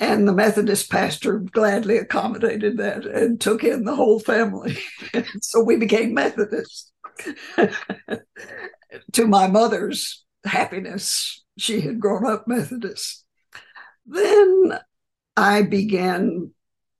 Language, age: English, 60-79